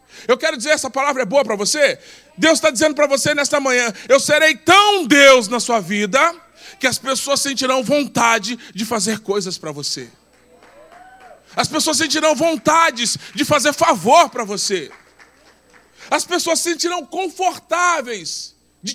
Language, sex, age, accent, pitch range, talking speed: Portuguese, male, 20-39, Brazilian, 185-300 Hz, 150 wpm